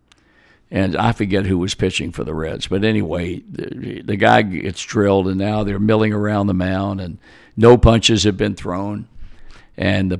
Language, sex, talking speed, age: English, male, 180 wpm, 60-79